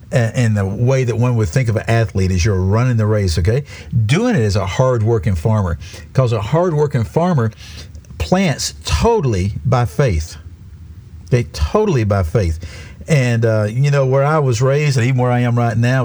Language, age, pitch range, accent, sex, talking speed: English, 50-69, 100-130 Hz, American, male, 185 wpm